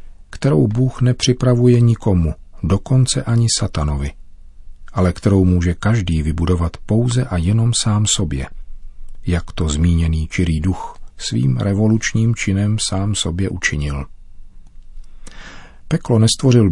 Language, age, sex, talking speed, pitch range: Czech, 40-59, male, 110 wpm, 85-105 Hz